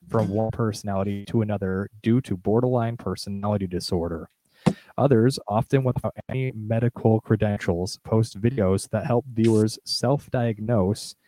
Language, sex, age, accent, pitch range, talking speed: English, male, 20-39, American, 100-120 Hz, 115 wpm